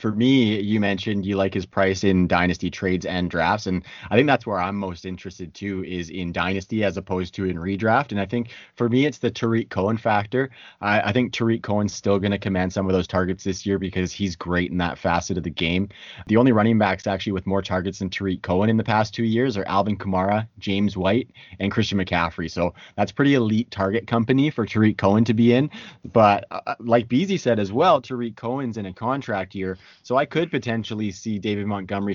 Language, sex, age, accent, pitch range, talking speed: English, male, 30-49, American, 95-115 Hz, 225 wpm